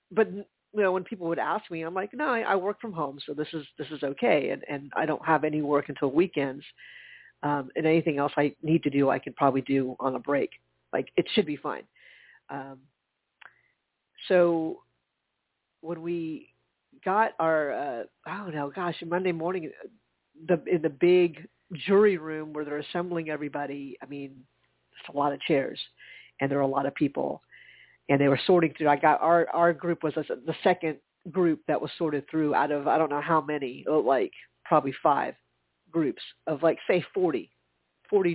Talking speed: 190 wpm